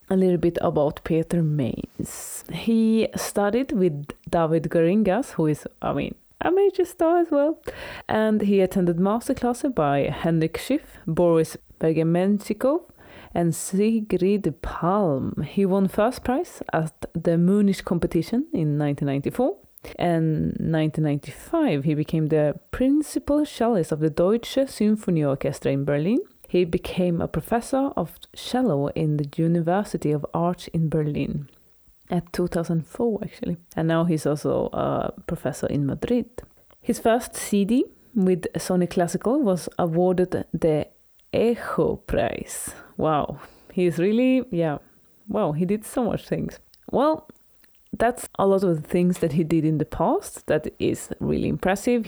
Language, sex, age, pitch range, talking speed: English, female, 30-49, 160-225 Hz, 135 wpm